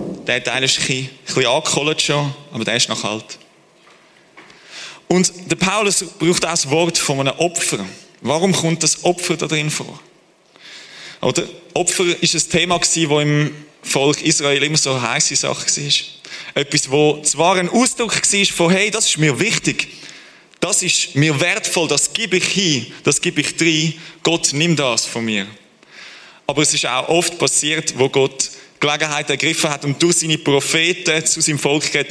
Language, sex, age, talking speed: German, male, 30-49, 170 wpm